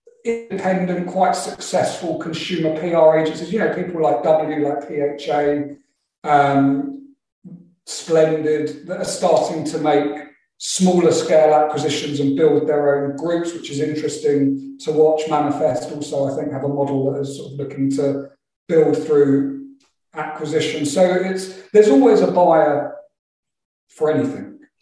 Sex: male